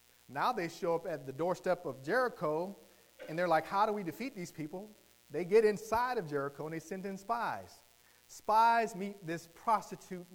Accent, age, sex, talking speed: American, 40-59, male, 185 wpm